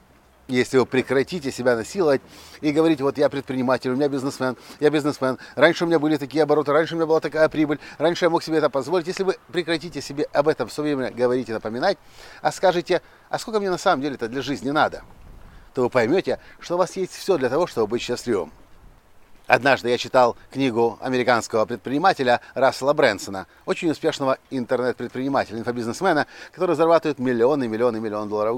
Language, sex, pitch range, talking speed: Russian, male, 120-155 Hz, 185 wpm